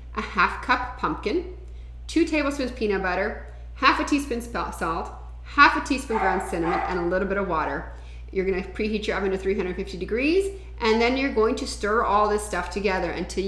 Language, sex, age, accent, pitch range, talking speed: English, female, 30-49, American, 175-240 Hz, 185 wpm